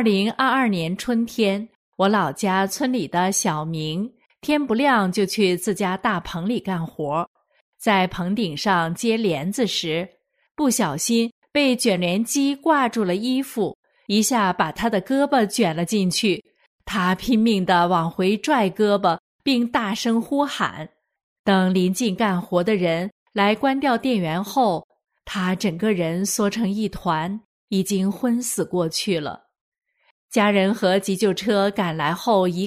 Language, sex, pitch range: Chinese, female, 185-230 Hz